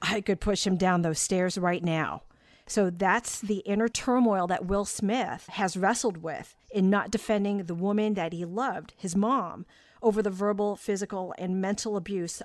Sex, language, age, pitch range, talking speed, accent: female, English, 40-59, 180-210 Hz, 180 wpm, American